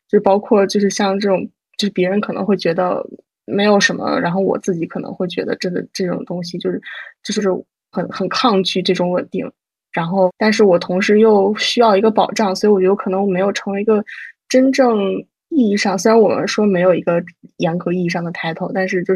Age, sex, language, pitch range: 10-29, female, Chinese, 185-220 Hz